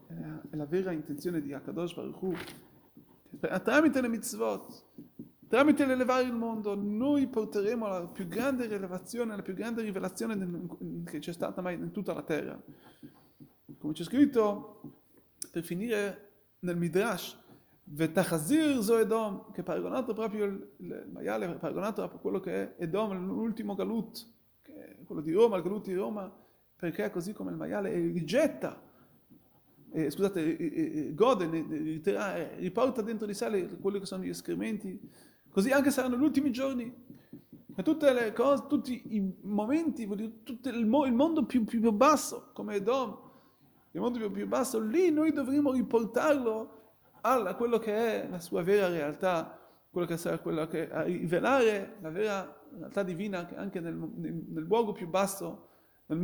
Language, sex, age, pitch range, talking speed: Italian, male, 30-49, 180-245 Hz, 160 wpm